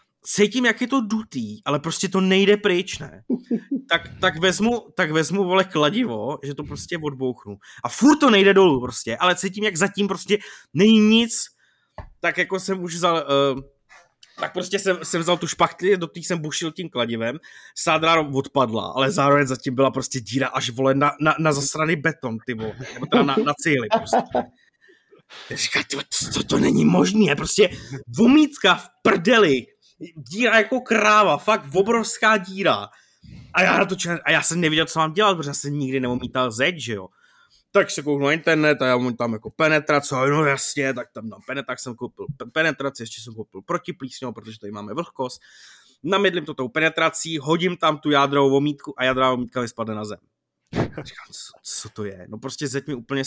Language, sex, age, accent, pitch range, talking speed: Czech, male, 20-39, native, 130-190 Hz, 180 wpm